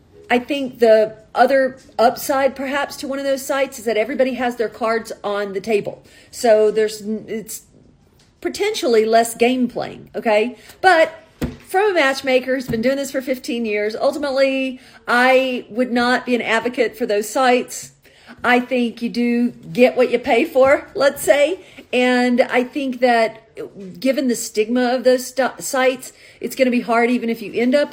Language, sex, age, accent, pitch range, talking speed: English, female, 40-59, American, 220-270 Hz, 170 wpm